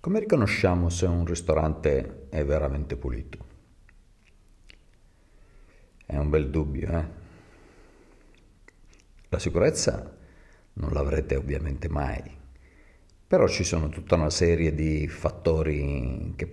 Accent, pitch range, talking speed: native, 75-90 Hz, 100 wpm